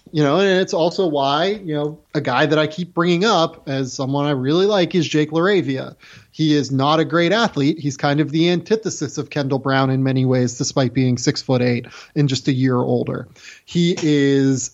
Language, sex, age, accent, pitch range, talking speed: English, male, 20-39, American, 135-165 Hz, 210 wpm